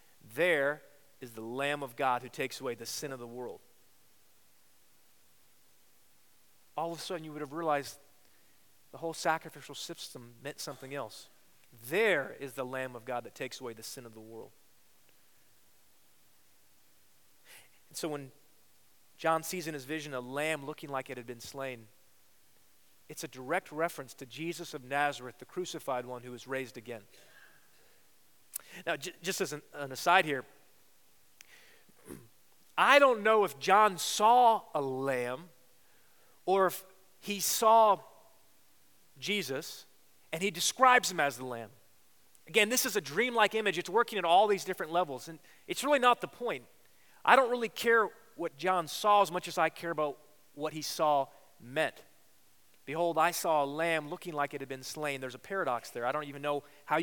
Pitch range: 135-185 Hz